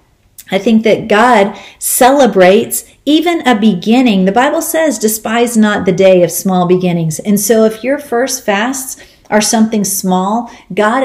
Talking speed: 150 wpm